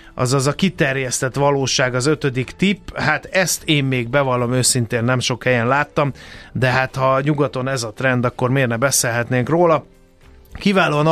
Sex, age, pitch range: male, 30-49, 115-145 Hz